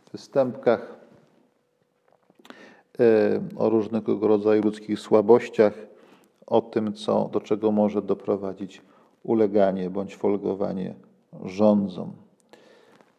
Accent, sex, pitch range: native, male, 105-115 Hz